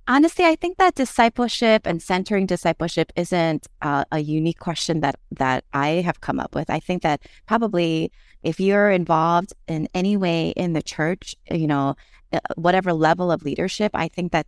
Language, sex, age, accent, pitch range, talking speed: English, female, 30-49, American, 150-200 Hz, 175 wpm